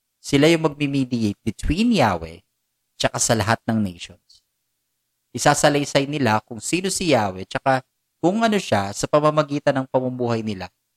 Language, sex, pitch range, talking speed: Filipino, male, 100-145 Hz, 135 wpm